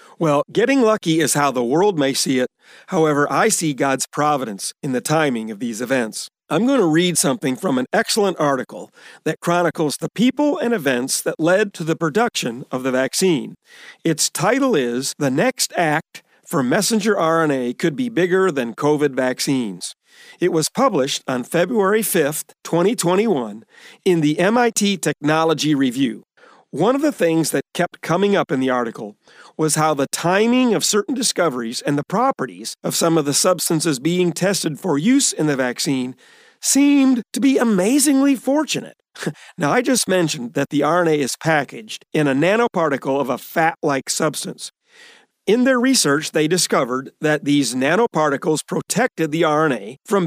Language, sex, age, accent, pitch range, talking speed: English, male, 50-69, American, 145-225 Hz, 165 wpm